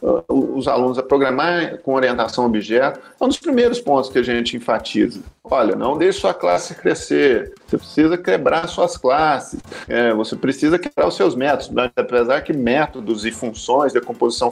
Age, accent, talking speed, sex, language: 50-69, Brazilian, 175 wpm, male, Portuguese